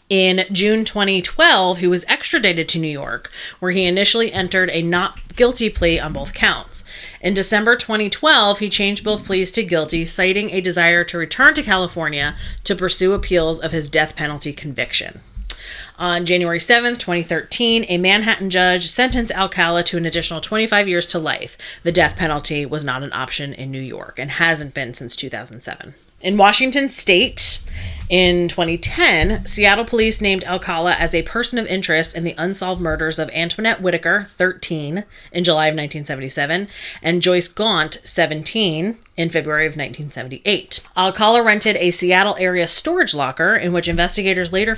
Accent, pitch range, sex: American, 160-200 Hz, female